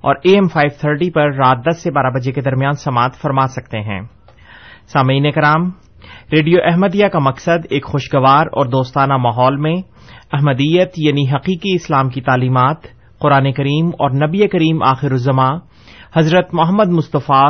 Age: 30-49